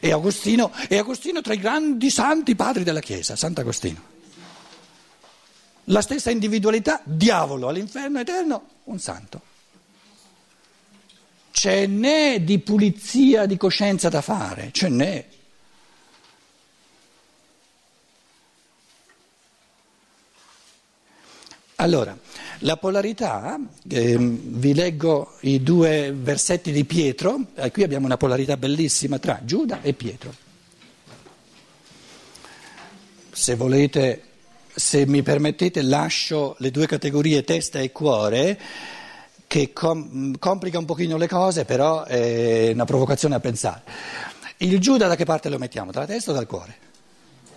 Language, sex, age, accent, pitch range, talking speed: Italian, male, 60-79, native, 135-200 Hz, 110 wpm